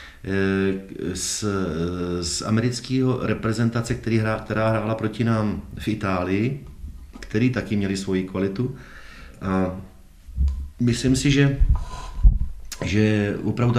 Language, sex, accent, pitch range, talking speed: Czech, male, native, 95-115 Hz, 85 wpm